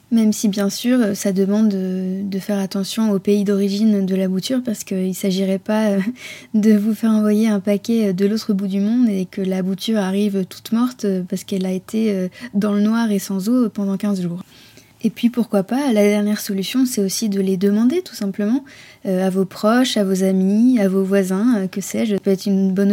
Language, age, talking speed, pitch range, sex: French, 20-39, 210 wpm, 195-220 Hz, female